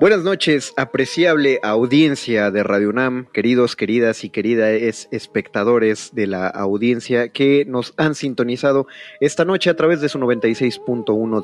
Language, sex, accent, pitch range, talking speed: Spanish, male, Mexican, 105-140 Hz, 135 wpm